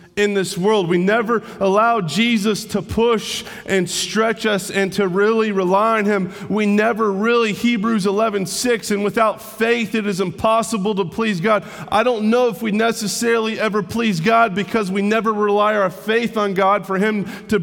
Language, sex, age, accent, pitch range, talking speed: English, male, 30-49, American, 195-225 Hz, 180 wpm